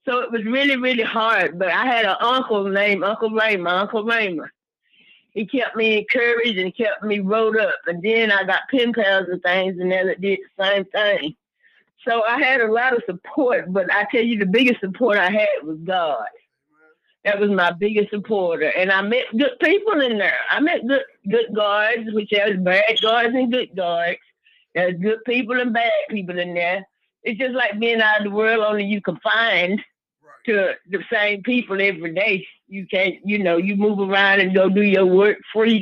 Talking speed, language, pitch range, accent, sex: 200 wpm, English, 195-250 Hz, American, female